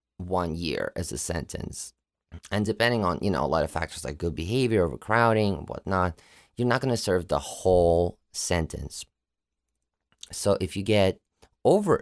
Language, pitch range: English, 85-110 Hz